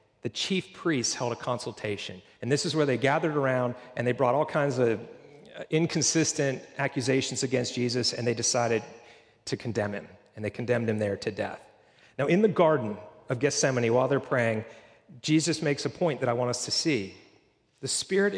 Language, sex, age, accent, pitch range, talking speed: English, male, 40-59, American, 125-160 Hz, 185 wpm